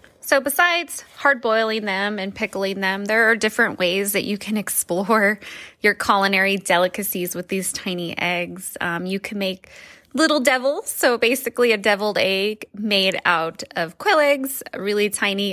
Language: English